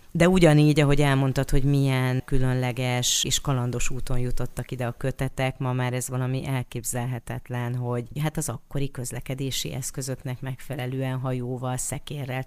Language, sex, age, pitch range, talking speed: Hungarian, female, 30-49, 125-145 Hz, 135 wpm